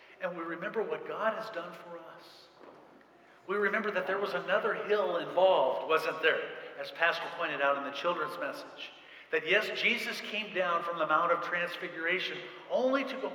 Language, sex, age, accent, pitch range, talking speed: English, male, 50-69, American, 170-235 Hz, 180 wpm